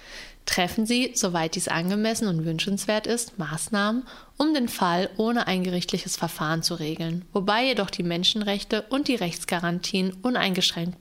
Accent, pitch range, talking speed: German, 175-245 Hz, 140 wpm